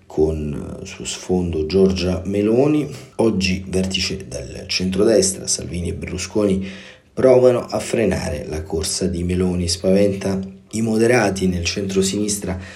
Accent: native